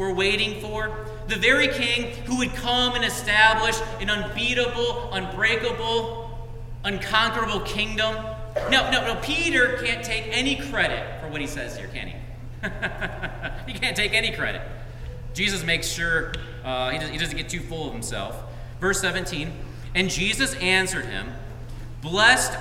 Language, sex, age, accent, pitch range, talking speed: English, male, 40-59, American, 120-185 Hz, 150 wpm